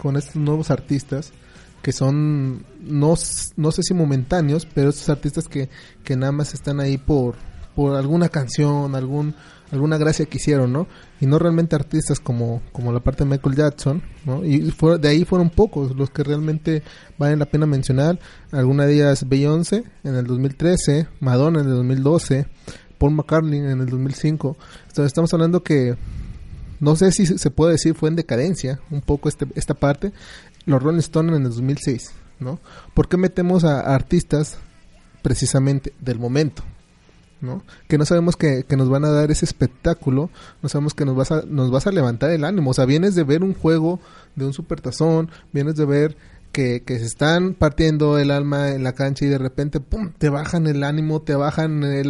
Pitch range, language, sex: 135-160 Hz, Spanish, male